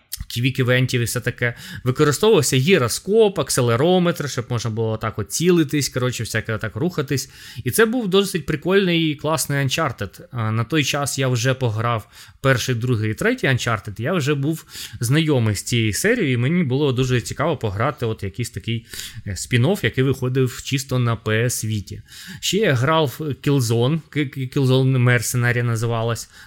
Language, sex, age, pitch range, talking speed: Ukrainian, male, 20-39, 115-140 Hz, 150 wpm